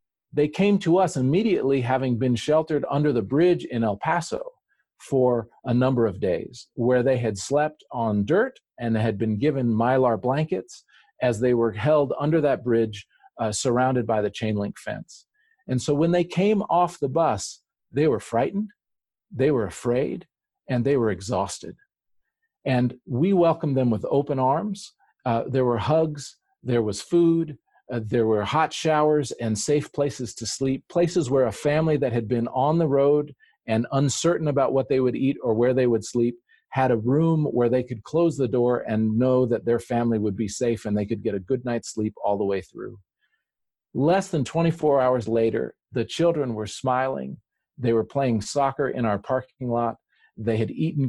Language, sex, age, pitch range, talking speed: English, male, 40-59, 115-155 Hz, 185 wpm